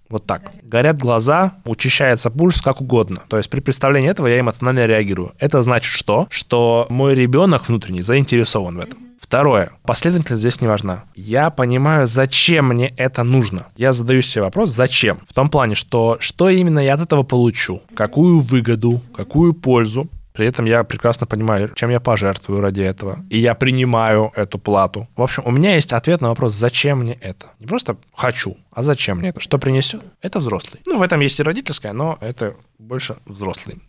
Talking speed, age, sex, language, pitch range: 185 wpm, 20-39, male, Russian, 110-140 Hz